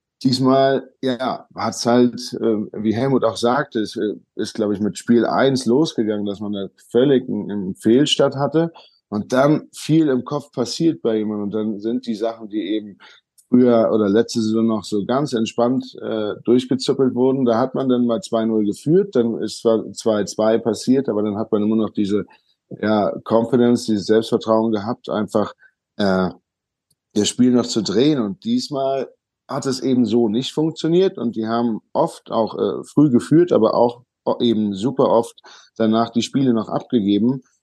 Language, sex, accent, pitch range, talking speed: German, male, German, 110-130 Hz, 175 wpm